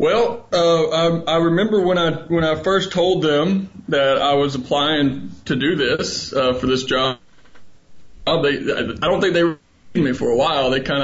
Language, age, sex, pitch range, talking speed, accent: English, 20-39, male, 130-160 Hz, 190 wpm, American